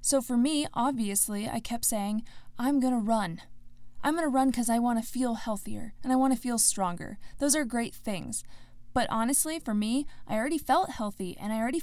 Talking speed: 215 wpm